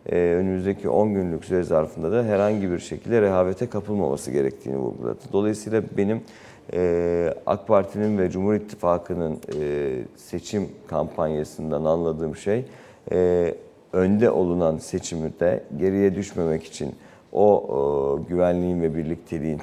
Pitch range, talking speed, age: 80-100 Hz, 105 wpm, 50-69